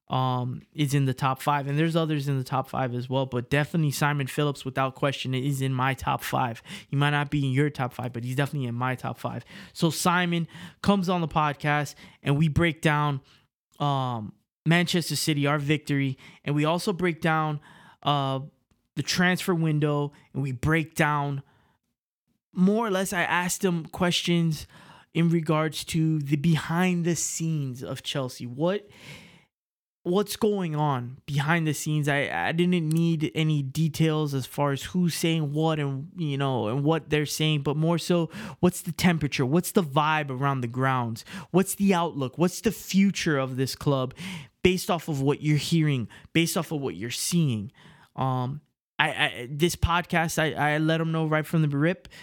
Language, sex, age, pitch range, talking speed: English, male, 20-39, 140-170 Hz, 180 wpm